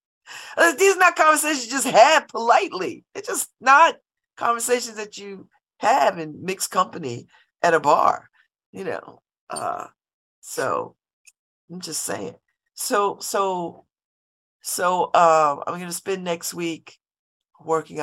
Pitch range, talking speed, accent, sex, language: 155-200 Hz, 130 wpm, American, female, English